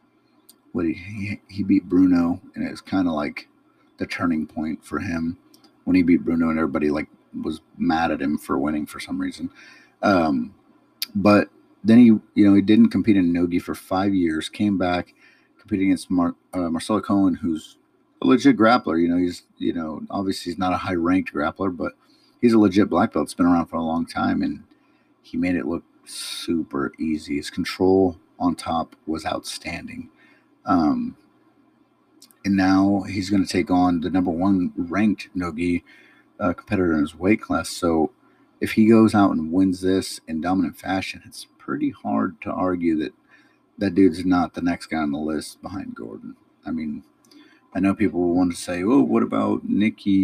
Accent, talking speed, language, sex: American, 185 wpm, English, male